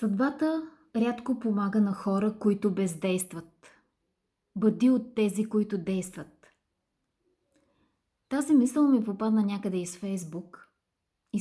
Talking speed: 105 wpm